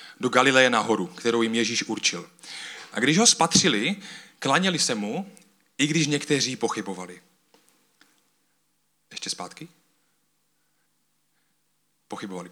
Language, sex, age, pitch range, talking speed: Czech, male, 30-49, 125-160 Hz, 100 wpm